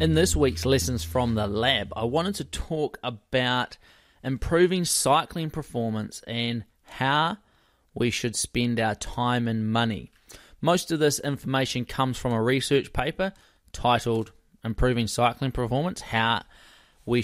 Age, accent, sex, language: 20-39, Australian, male, English